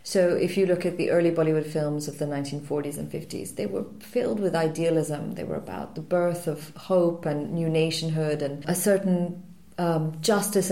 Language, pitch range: English, 160-205 Hz